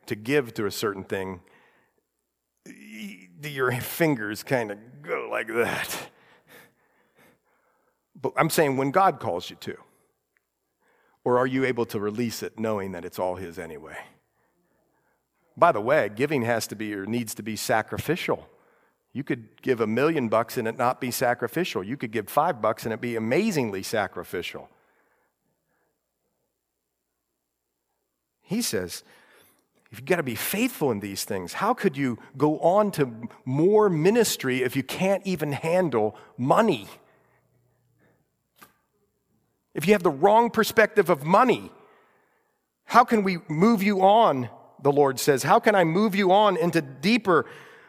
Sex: male